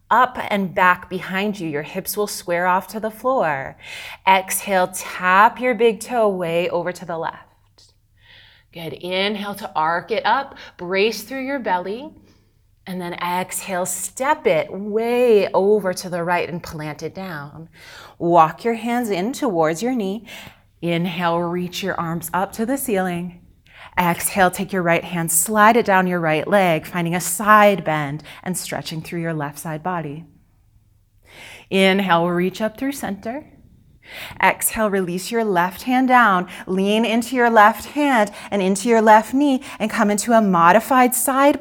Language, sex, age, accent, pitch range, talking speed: English, female, 30-49, American, 170-225 Hz, 160 wpm